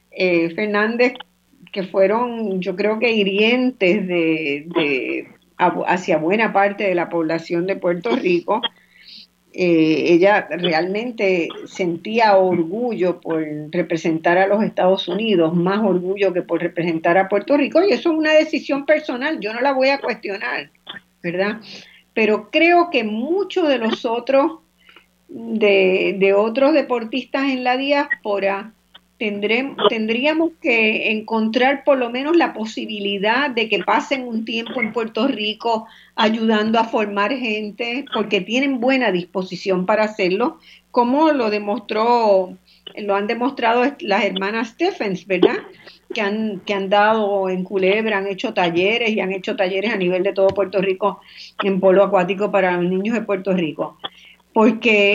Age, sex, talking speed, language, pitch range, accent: 50-69, female, 140 wpm, Spanish, 190-245 Hz, American